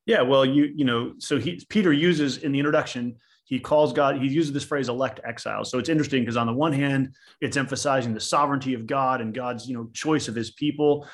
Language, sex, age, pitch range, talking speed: English, male, 30-49, 120-145 Hz, 230 wpm